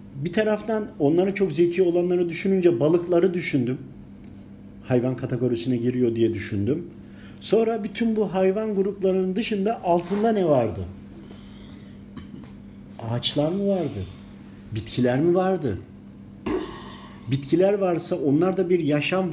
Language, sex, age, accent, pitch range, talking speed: Turkish, male, 50-69, native, 130-190 Hz, 110 wpm